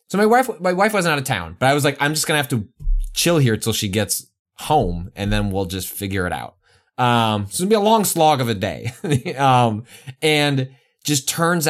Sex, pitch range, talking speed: male, 95-130 Hz, 235 wpm